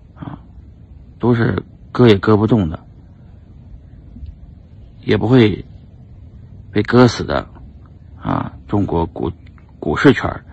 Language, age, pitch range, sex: Chinese, 50-69, 85-110 Hz, male